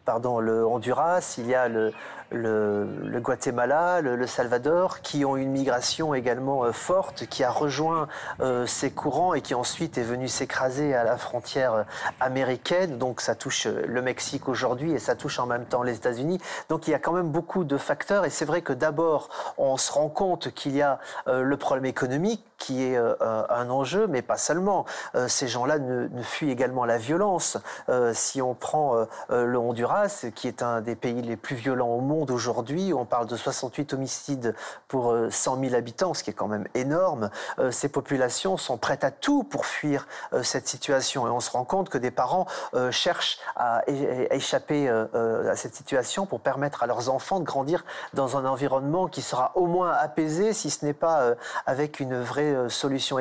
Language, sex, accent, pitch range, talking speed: French, male, French, 125-155 Hz, 195 wpm